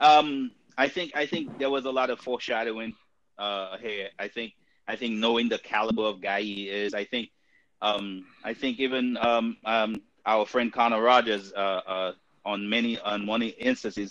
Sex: male